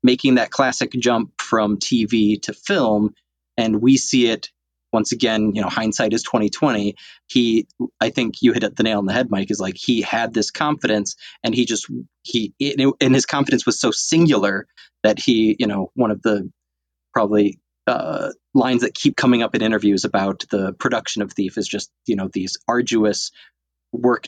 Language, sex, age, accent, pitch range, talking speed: English, male, 20-39, American, 95-120 Hz, 185 wpm